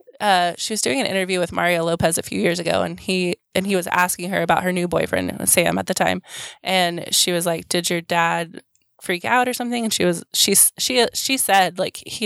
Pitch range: 175-205 Hz